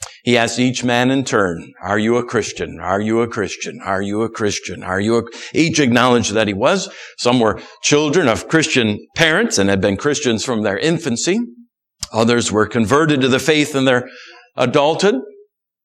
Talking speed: 180 wpm